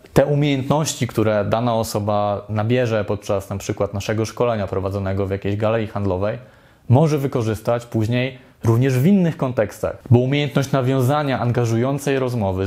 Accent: native